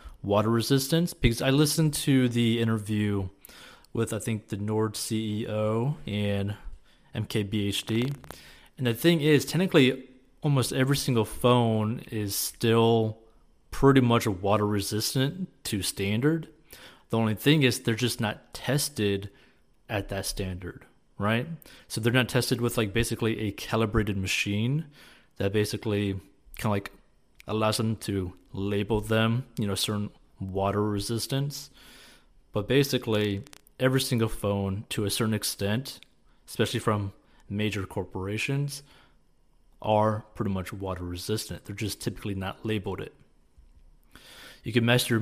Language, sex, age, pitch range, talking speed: English, male, 30-49, 100-120 Hz, 130 wpm